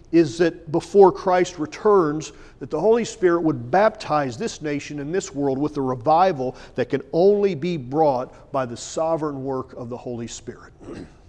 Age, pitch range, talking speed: 40-59, 125-175 Hz, 170 wpm